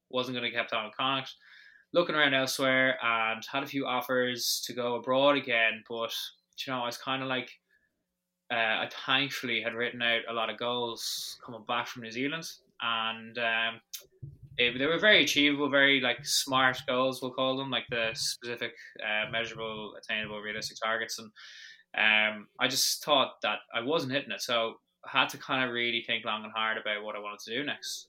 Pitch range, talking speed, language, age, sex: 110-130 Hz, 195 wpm, English, 20-39, male